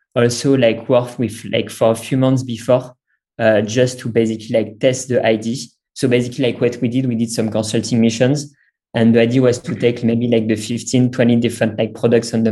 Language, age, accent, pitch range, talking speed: English, 20-39, French, 115-125 Hz, 215 wpm